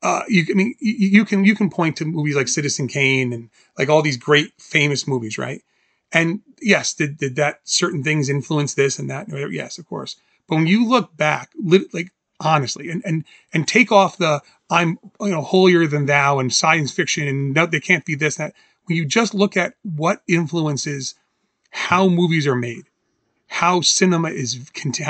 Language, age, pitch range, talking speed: English, 30-49, 150-195 Hz, 195 wpm